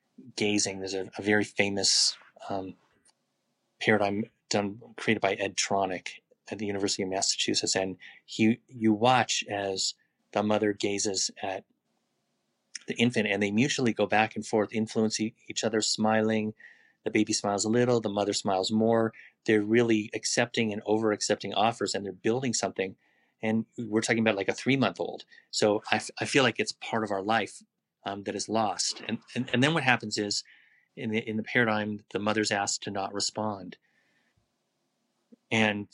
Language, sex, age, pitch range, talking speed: English, male, 30-49, 100-110 Hz, 170 wpm